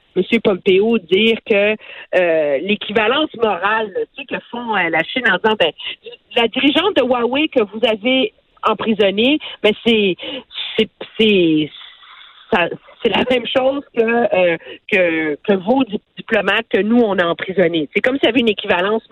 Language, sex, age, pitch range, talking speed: French, female, 50-69, 185-240 Hz, 170 wpm